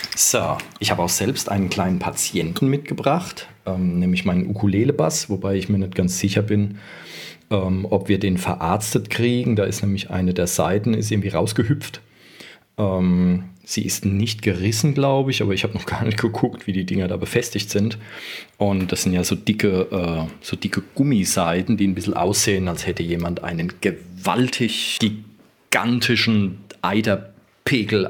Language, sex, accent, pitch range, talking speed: German, male, German, 90-105 Hz, 160 wpm